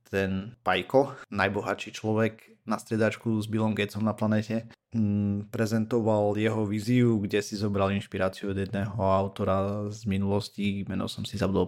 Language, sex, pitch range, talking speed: Slovak, male, 100-110 Hz, 140 wpm